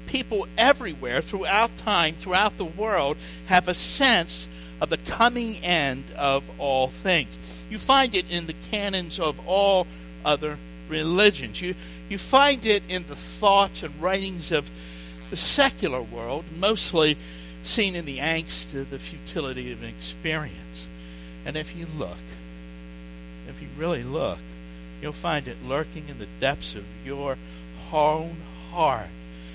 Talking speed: 140 wpm